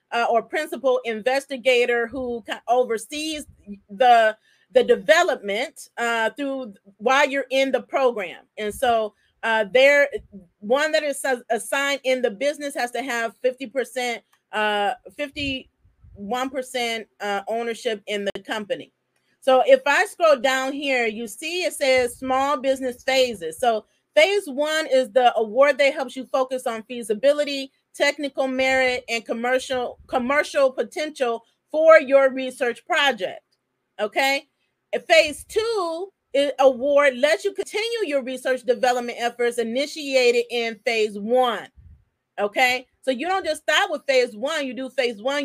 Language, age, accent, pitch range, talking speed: English, 40-59, American, 240-285 Hz, 135 wpm